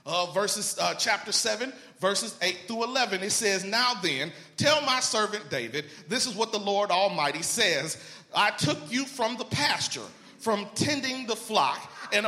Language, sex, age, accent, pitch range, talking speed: English, male, 40-59, American, 205-255 Hz, 170 wpm